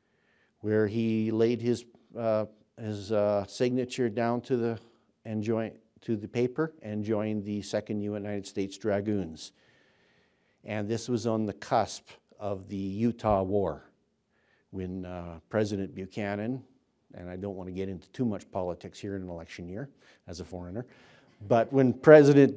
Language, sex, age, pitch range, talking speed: English, male, 50-69, 100-115 Hz, 150 wpm